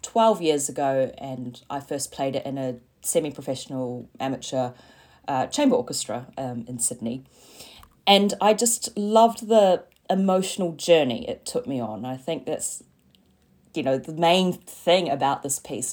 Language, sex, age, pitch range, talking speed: English, female, 30-49, 130-160 Hz, 150 wpm